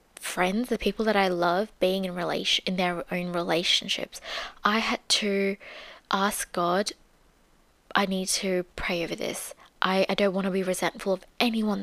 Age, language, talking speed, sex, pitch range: 20-39, English, 170 wpm, female, 180-210 Hz